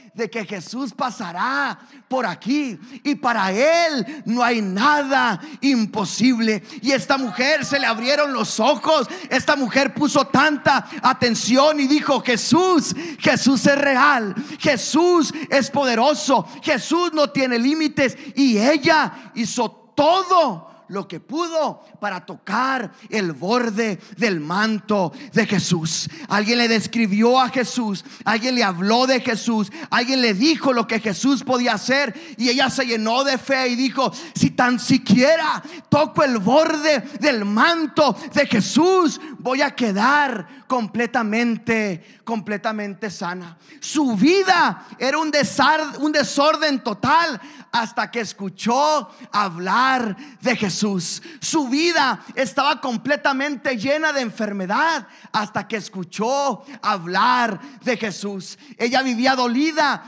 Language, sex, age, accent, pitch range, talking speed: English, male, 40-59, Mexican, 220-285 Hz, 125 wpm